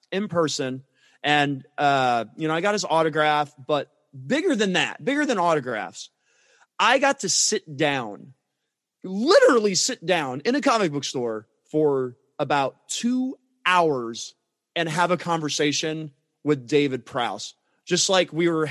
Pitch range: 135-180 Hz